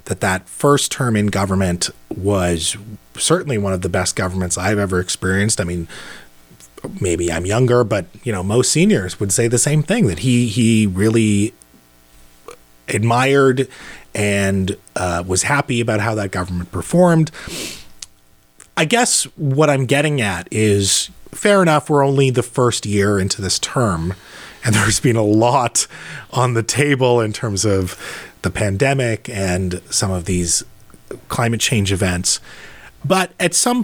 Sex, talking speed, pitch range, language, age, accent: male, 150 wpm, 95-135 Hz, English, 30-49, American